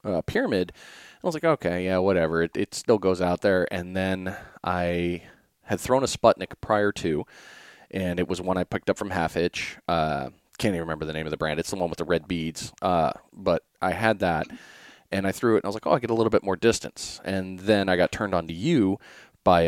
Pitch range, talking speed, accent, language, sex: 85-105 Hz, 240 wpm, American, English, male